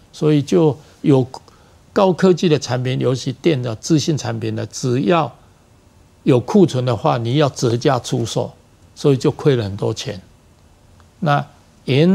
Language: Chinese